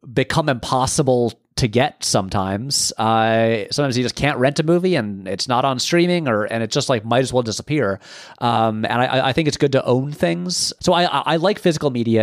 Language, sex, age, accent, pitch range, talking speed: English, male, 30-49, American, 105-135 Hz, 215 wpm